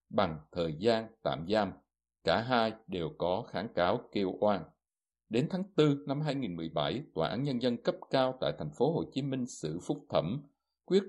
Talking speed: 185 wpm